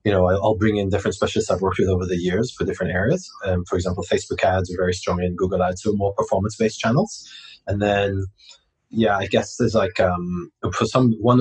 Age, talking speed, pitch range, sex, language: 20-39, 220 wpm, 95-110 Hz, male, English